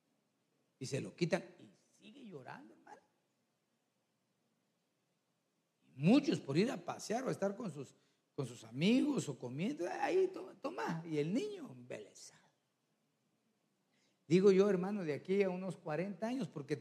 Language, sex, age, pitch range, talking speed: Spanish, male, 50-69, 150-200 Hz, 145 wpm